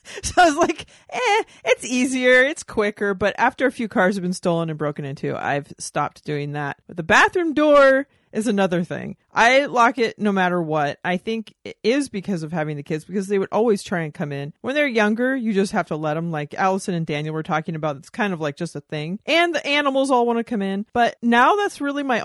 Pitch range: 185-255 Hz